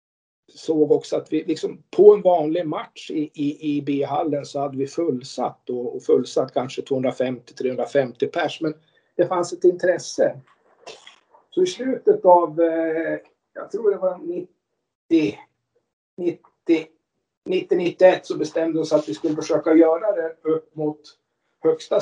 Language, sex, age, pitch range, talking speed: Swedish, male, 50-69, 145-195 Hz, 145 wpm